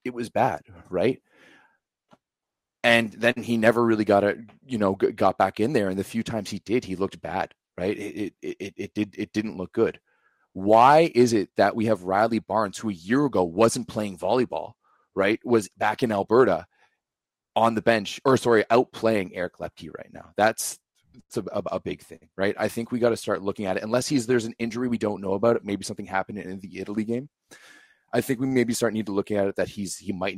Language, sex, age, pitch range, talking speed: English, male, 30-49, 100-125 Hz, 225 wpm